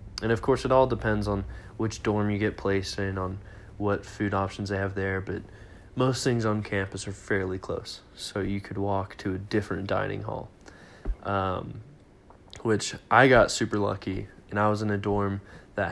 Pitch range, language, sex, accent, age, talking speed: 95-110 Hz, English, male, American, 20-39, 190 wpm